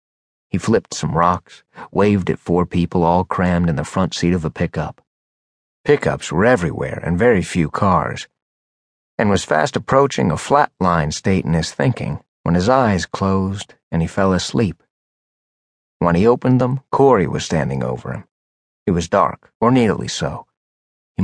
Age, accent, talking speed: 40-59, American, 165 wpm